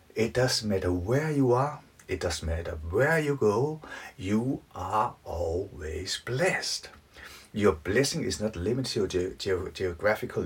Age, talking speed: 60-79, 140 wpm